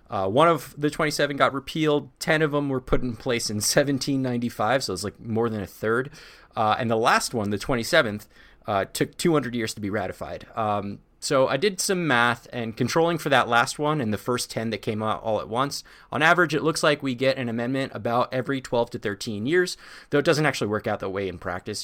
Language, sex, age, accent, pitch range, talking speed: English, male, 30-49, American, 105-145 Hz, 230 wpm